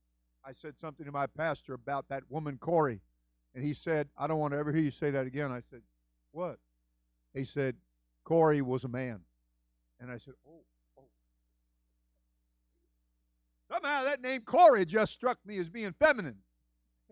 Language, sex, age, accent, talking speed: English, male, 50-69, American, 165 wpm